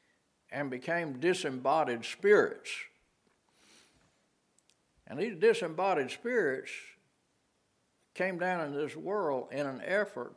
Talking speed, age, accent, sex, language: 95 wpm, 60-79, American, male, English